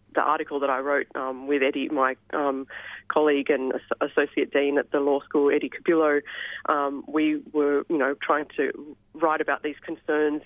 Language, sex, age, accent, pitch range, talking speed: English, female, 30-49, Australian, 140-160 Hz, 180 wpm